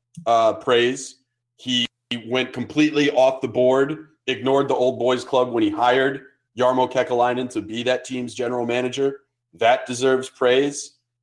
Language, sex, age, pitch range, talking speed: English, male, 30-49, 120-145 Hz, 150 wpm